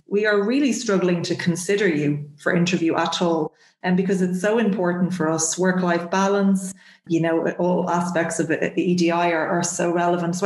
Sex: female